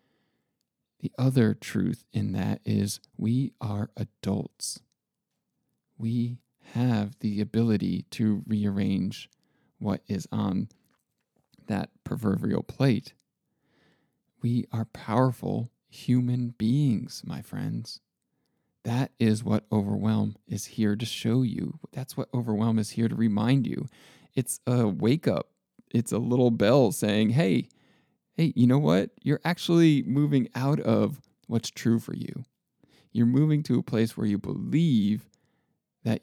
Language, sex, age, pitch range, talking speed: English, male, 40-59, 105-130 Hz, 125 wpm